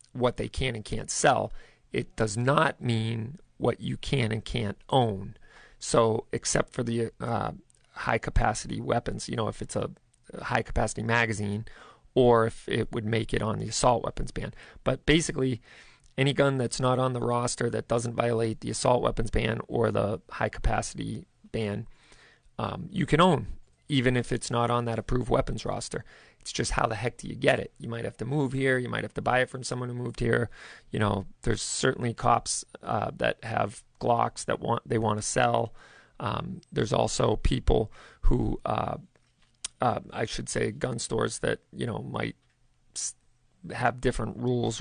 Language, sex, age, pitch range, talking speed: English, male, 40-59, 110-125 Hz, 180 wpm